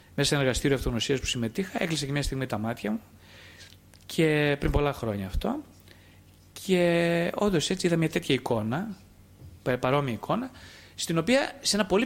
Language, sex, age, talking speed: Greek, male, 30-49, 165 wpm